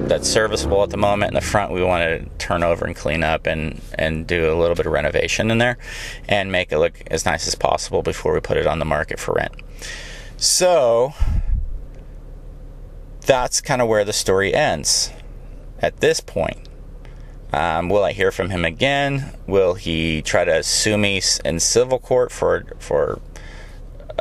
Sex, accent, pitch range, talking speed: male, American, 85-130 Hz, 180 wpm